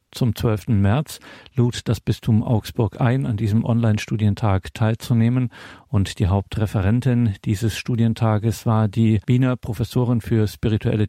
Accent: German